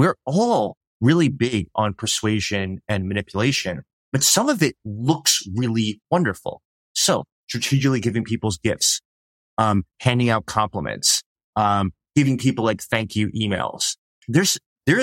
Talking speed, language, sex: 130 wpm, English, male